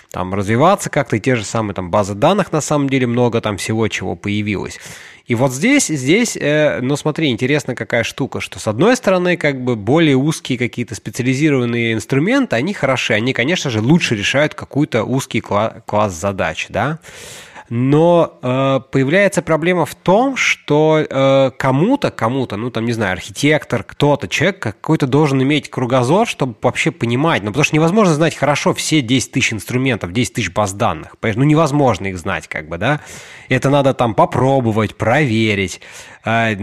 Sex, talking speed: male, 170 wpm